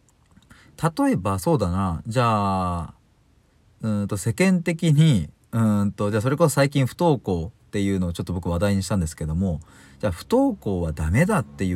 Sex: male